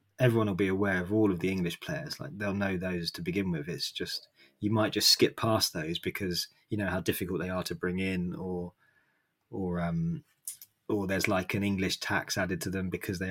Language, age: English, 20-39